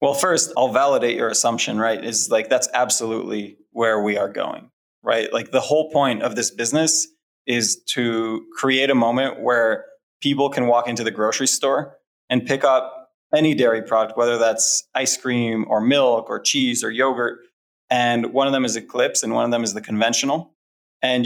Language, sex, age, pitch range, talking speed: English, male, 20-39, 115-140 Hz, 185 wpm